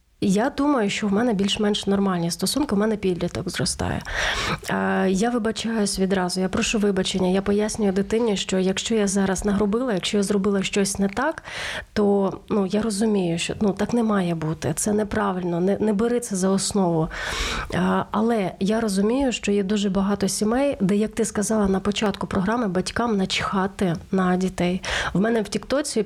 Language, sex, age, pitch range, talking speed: Ukrainian, female, 30-49, 190-215 Hz, 170 wpm